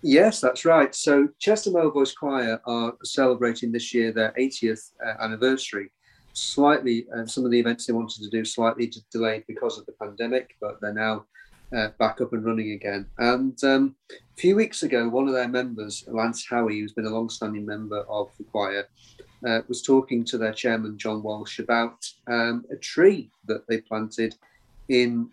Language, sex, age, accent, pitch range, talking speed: English, male, 40-59, British, 110-125 Hz, 185 wpm